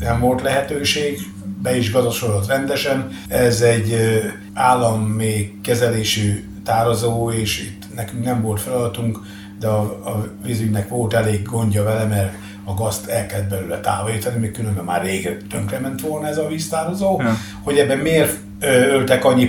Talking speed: 150 wpm